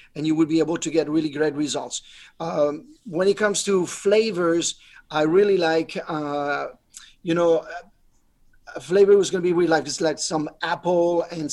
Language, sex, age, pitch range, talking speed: English, male, 40-59, 155-180 Hz, 180 wpm